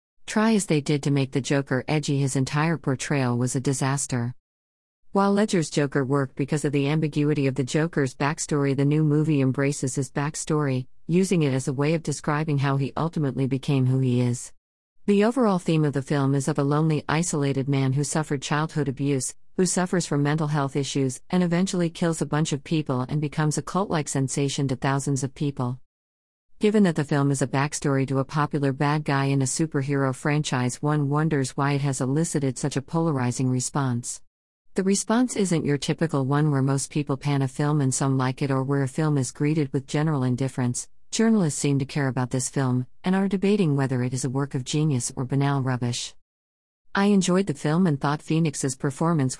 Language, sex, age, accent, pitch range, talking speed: English, female, 50-69, American, 135-155 Hz, 200 wpm